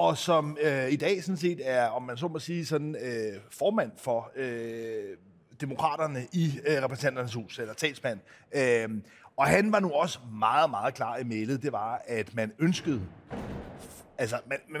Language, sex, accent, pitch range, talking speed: Danish, male, native, 130-170 Hz, 175 wpm